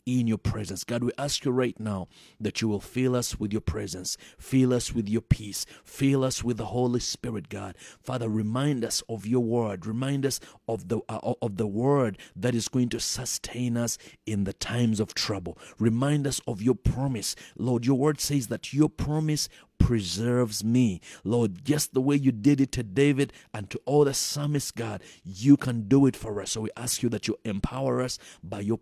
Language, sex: English, male